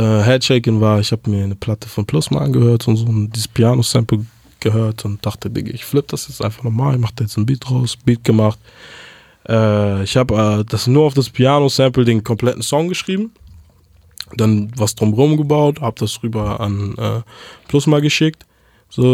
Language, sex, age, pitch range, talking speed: German, male, 20-39, 110-130 Hz, 180 wpm